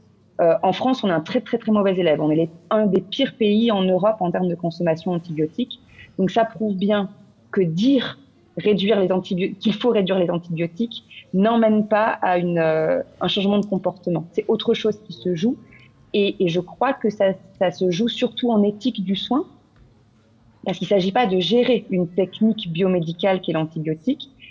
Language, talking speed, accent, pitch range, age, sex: French, 195 wpm, French, 170-225 Hz, 30-49, female